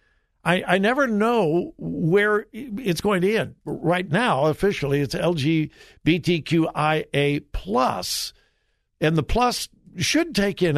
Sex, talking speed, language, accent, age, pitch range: male, 110 wpm, English, American, 60-79, 130-200 Hz